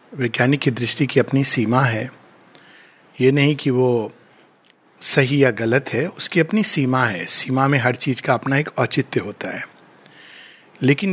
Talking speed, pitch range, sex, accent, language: 155 wpm, 130-180 Hz, male, native, Hindi